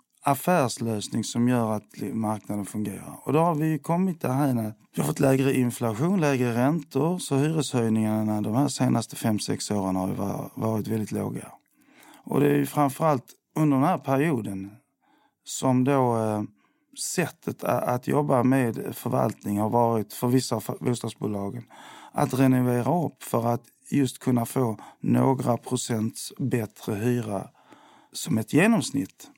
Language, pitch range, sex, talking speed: Swedish, 110-140 Hz, male, 145 wpm